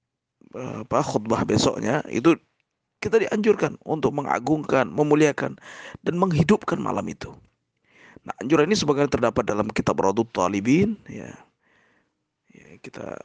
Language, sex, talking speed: Indonesian, male, 110 wpm